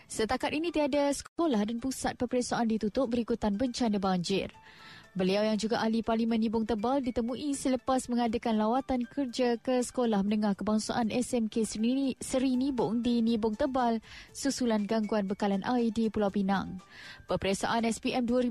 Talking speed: 135 wpm